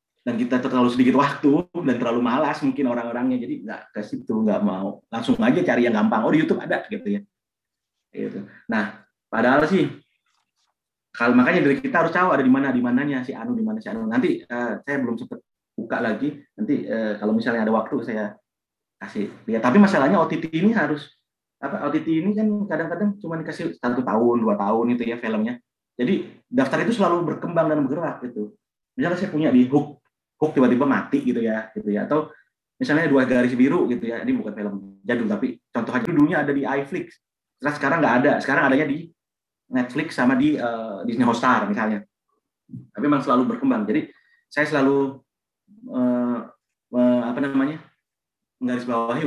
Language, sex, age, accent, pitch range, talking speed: English, male, 30-49, Indonesian, 125-180 Hz, 180 wpm